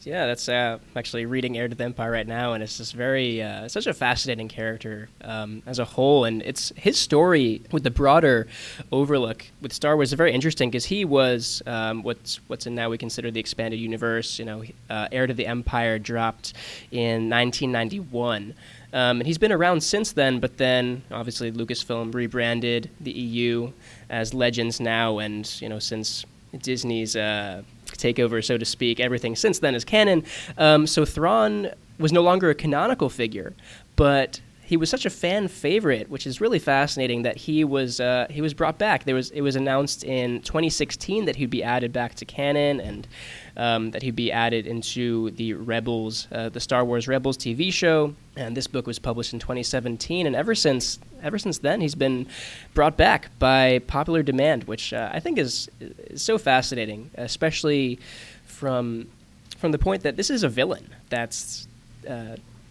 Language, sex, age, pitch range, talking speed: English, male, 10-29, 115-140 Hz, 185 wpm